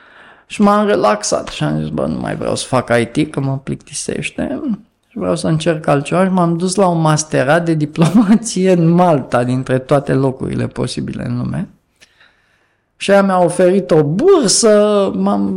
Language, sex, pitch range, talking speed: Romanian, male, 145-190 Hz, 170 wpm